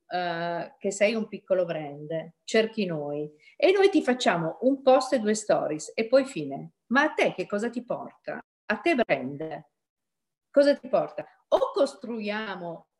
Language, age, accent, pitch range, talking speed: Italian, 50-69, native, 180-235 Hz, 155 wpm